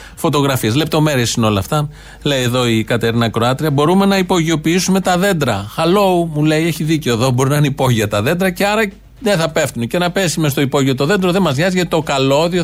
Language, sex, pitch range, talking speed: Greek, male, 115-165 Hz, 220 wpm